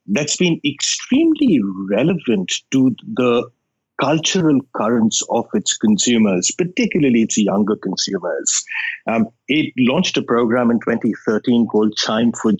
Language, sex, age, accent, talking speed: English, male, 50-69, Indian, 120 wpm